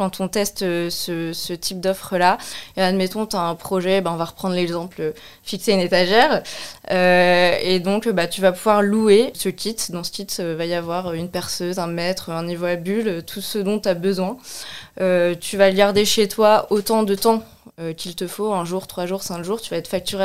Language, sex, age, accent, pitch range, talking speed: French, female, 20-39, French, 175-210 Hz, 230 wpm